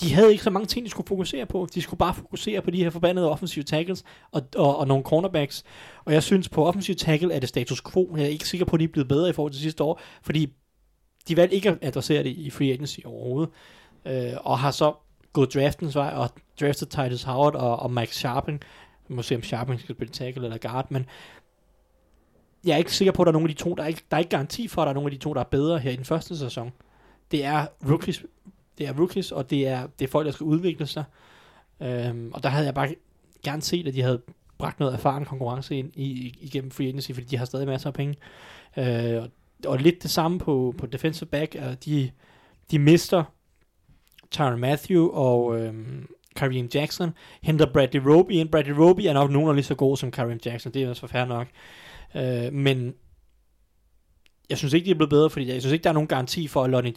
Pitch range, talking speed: 130-160 Hz, 240 wpm